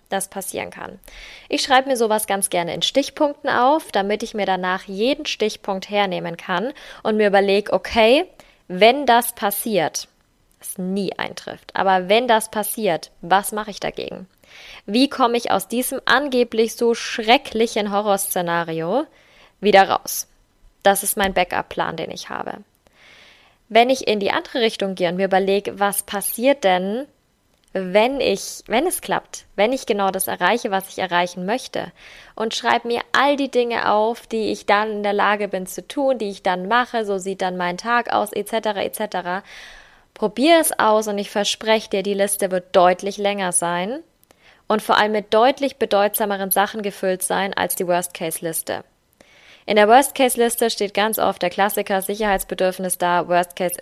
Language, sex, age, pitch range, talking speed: German, female, 20-39, 190-235 Hz, 165 wpm